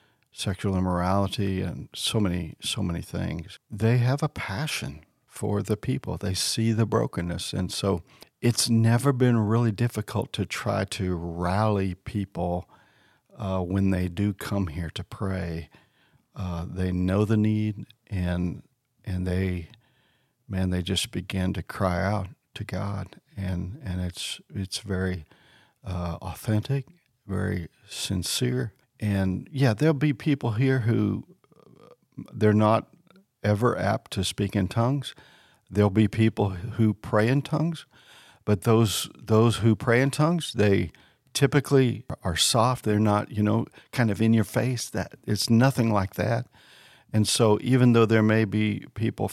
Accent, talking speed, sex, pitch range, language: American, 145 wpm, male, 95-120 Hz, English